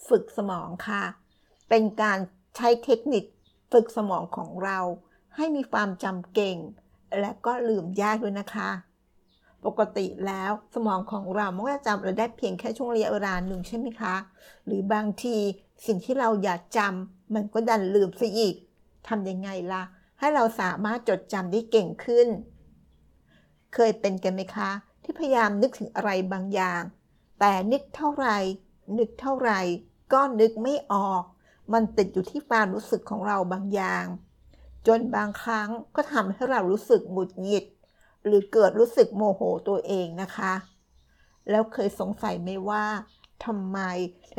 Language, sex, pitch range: Thai, female, 185-225 Hz